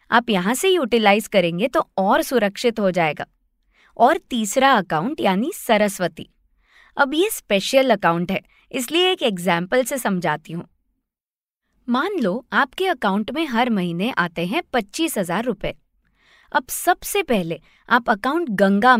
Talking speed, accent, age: 140 wpm, native, 20-39